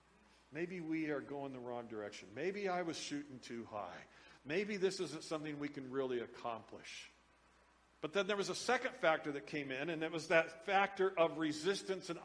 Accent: American